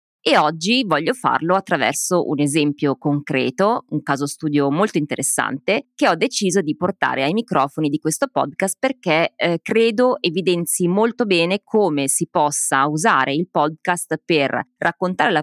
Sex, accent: female, native